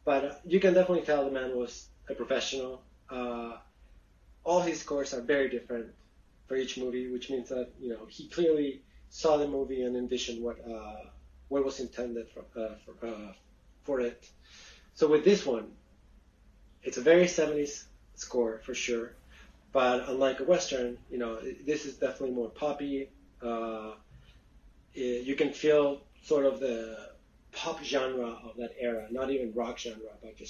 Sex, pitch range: male, 110-135 Hz